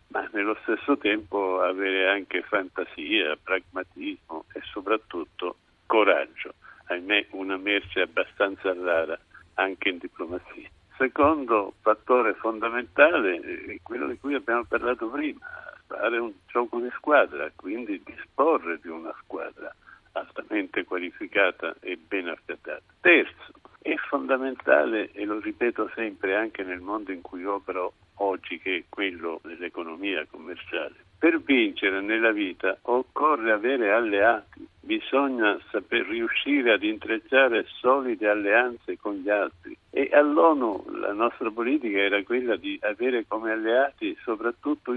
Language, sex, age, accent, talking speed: Italian, male, 60-79, native, 125 wpm